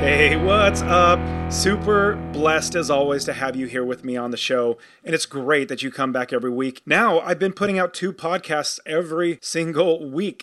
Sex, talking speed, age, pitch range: male, 200 wpm, 30-49, 130-175 Hz